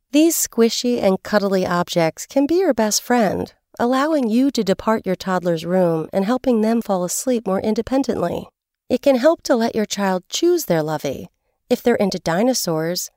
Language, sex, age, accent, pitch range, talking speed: English, female, 40-59, American, 180-255 Hz, 175 wpm